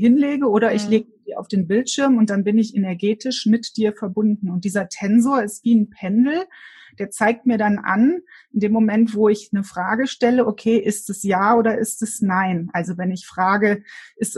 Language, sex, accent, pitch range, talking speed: German, female, German, 195-235 Hz, 205 wpm